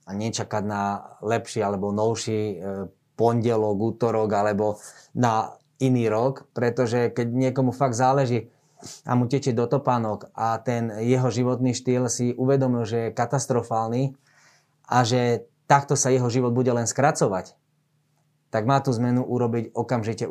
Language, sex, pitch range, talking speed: Slovak, male, 120-145 Hz, 135 wpm